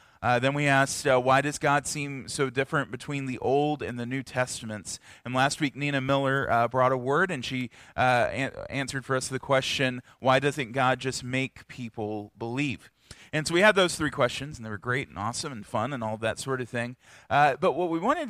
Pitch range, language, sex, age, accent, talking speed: 120-145 Hz, English, male, 30-49, American, 225 wpm